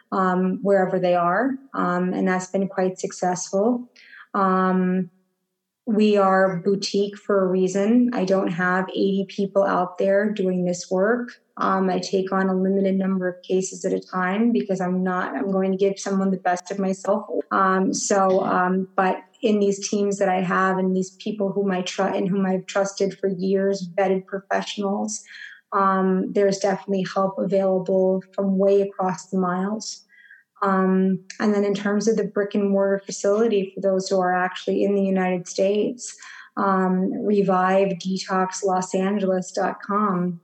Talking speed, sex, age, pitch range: 155 wpm, female, 20-39, 185-200 Hz